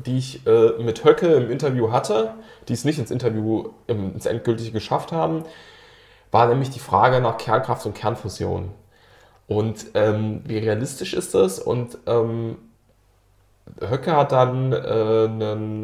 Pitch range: 110-130 Hz